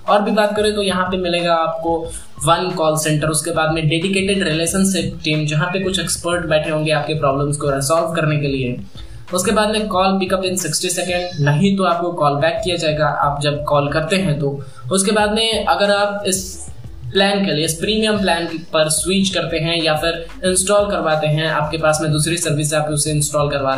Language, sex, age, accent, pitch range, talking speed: Hindi, male, 20-39, native, 150-185 Hz, 205 wpm